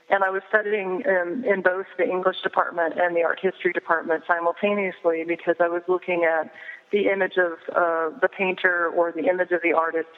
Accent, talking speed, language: American, 195 wpm, English